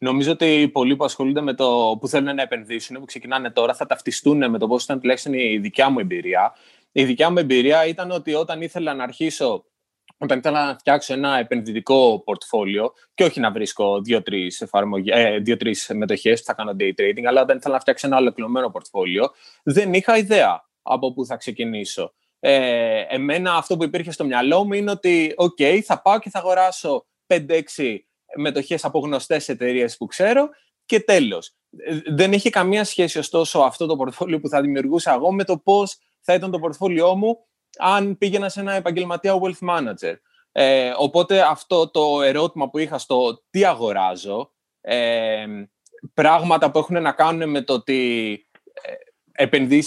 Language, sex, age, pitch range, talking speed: Greek, male, 20-39, 135-185 Hz, 170 wpm